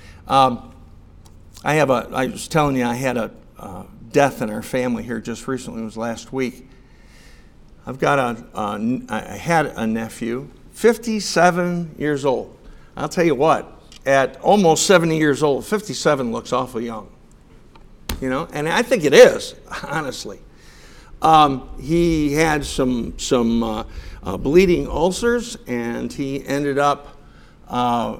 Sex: male